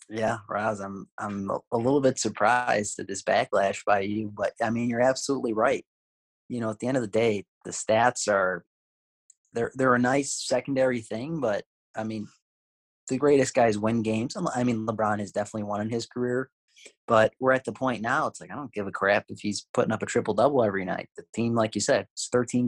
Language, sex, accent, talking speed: English, male, American, 215 wpm